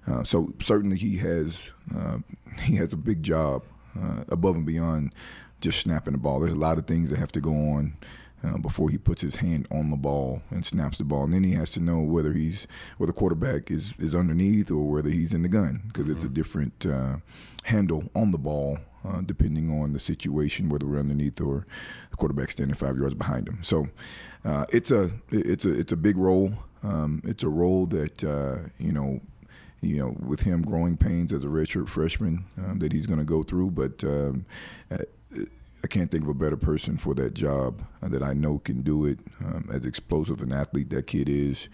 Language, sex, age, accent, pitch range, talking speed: English, male, 30-49, American, 70-85 Hz, 210 wpm